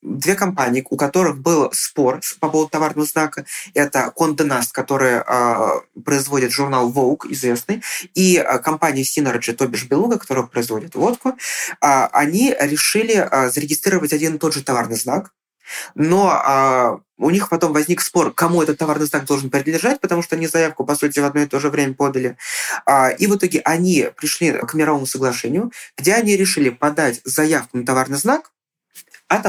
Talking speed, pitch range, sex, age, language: 170 wpm, 130-170 Hz, male, 20-39, Russian